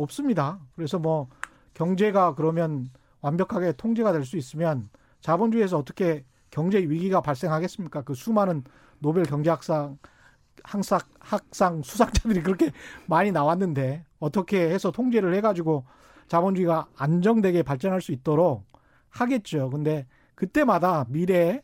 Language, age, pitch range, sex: Korean, 40-59, 150-220 Hz, male